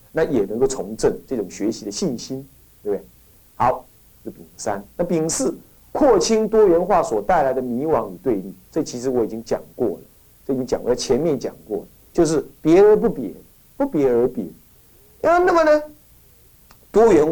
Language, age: Chinese, 50-69